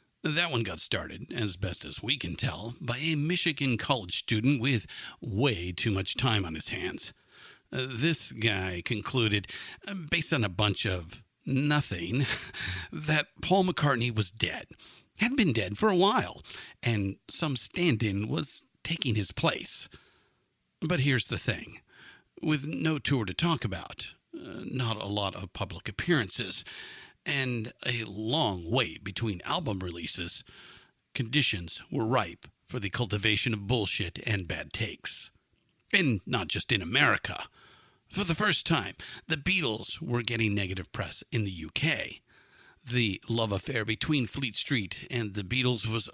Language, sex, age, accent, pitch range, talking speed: English, male, 50-69, American, 100-135 Hz, 150 wpm